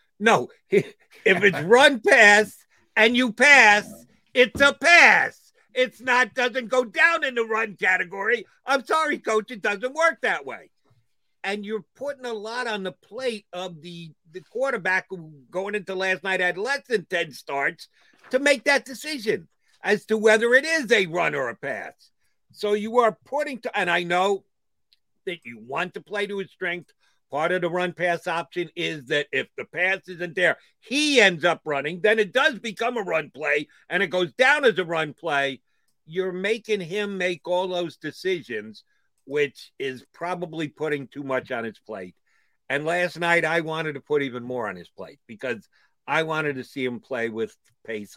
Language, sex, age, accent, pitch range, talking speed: English, male, 50-69, American, 155-225 Hz, 185 wpm